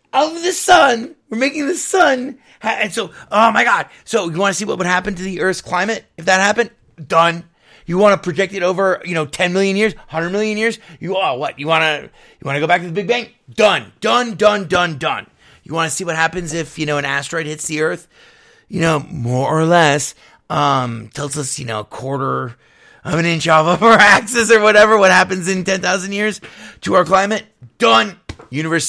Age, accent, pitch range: 30-49, American, 135-195 Hz